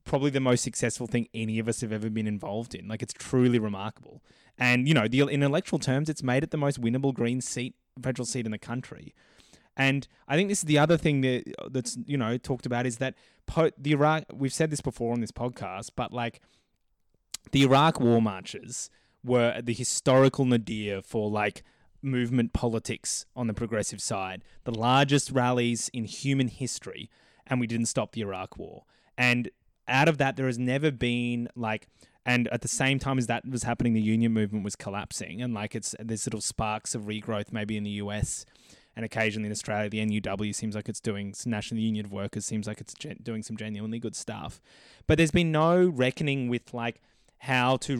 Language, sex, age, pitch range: English, male, 20-39, 110-130 Hz